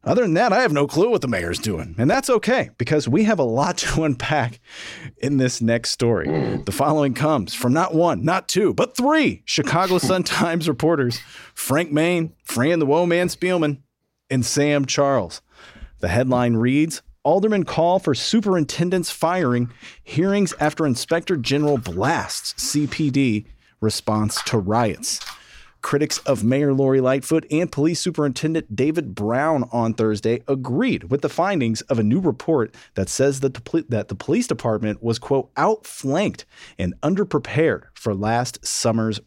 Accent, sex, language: American, male, English